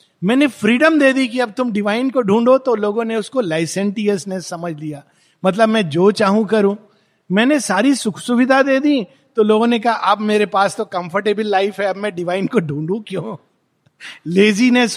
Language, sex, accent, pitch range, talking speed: Hindi, male, native, 180-245 Hz, 180 wpm